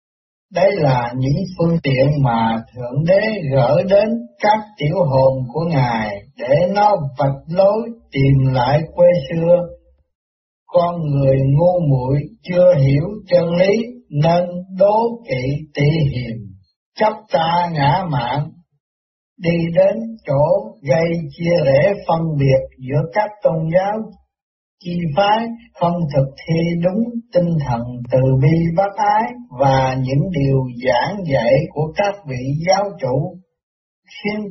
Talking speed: 130 wpm